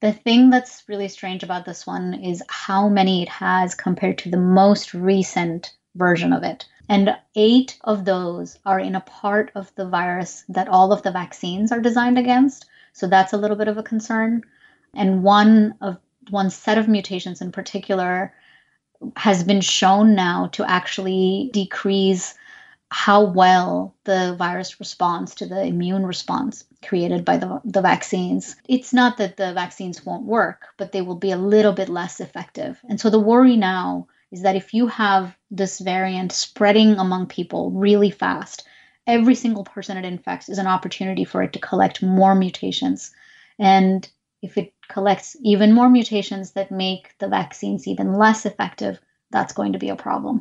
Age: 30-49